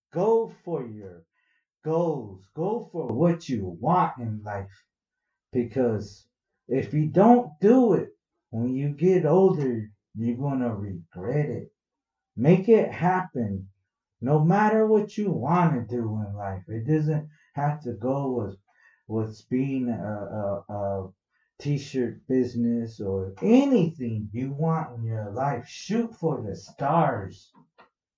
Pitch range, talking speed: 115-165 Hz, 130 wpm